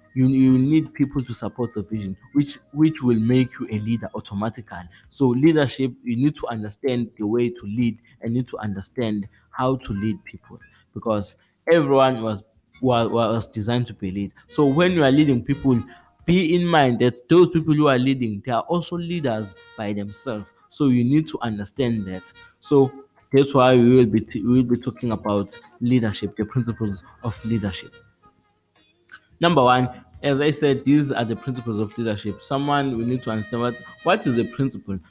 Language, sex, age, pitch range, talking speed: English, male, 20-39, 110-135 Hz, 180 wpm